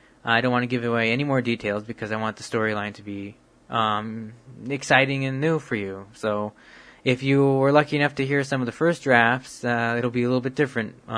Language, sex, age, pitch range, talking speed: English, male, 20-39, 115-135 Hz, 225 wpm